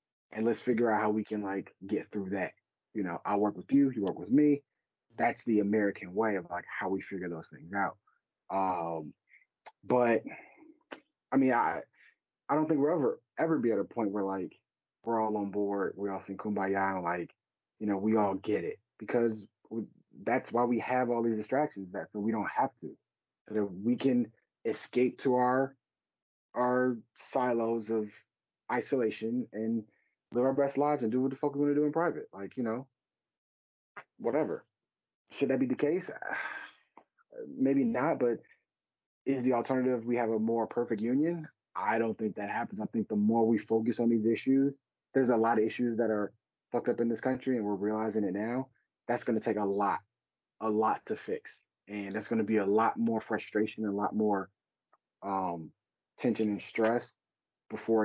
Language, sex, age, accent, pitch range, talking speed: English, male, 30-49, American, 105-125 Hz, 195 wpm